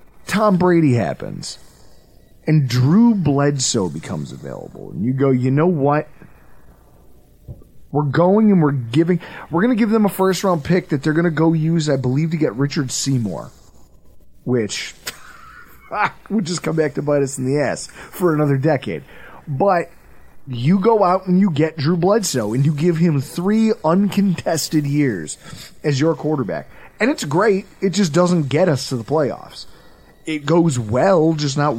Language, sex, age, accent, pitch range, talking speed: English, male, 30-49, American, 125-170 Hz, 165 wpm